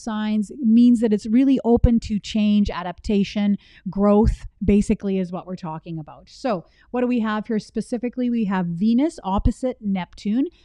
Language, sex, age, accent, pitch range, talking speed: English, female, 40-59, American, 195-235 Hz, 160 wpm